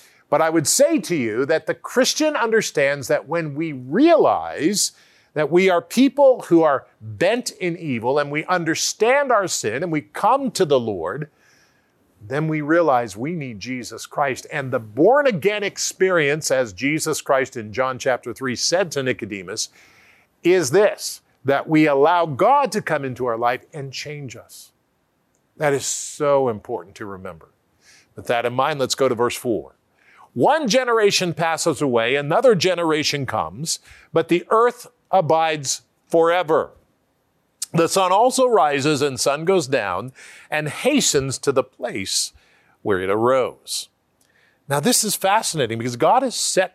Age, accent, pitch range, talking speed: 50-69, American, 130-185 Hz, 155 wpm